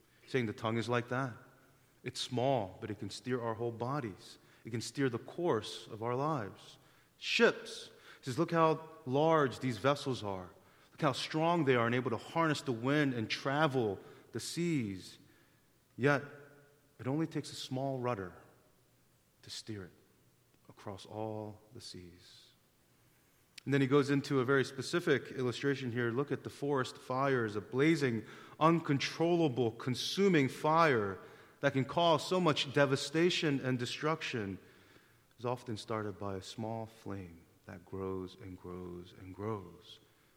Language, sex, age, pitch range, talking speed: English, male, 30-49, 110-145 Hz, 150 wpm